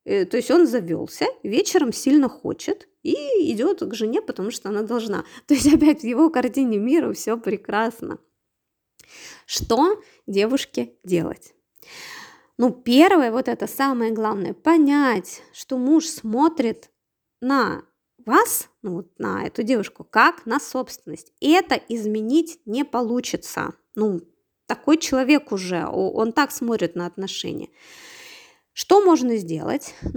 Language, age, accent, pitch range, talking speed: Russian, 20-39, native, 205-310 Hz, 125 wpm